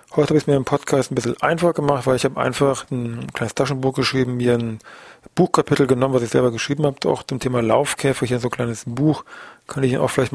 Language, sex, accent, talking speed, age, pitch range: German, male, German, 245 wpm, 40-59, 120-135 Hz